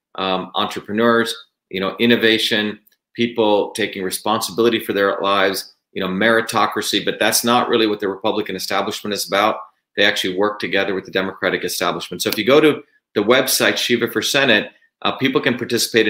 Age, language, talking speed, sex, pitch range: 40-59, English, 170 wpm, male, 105-120 Hz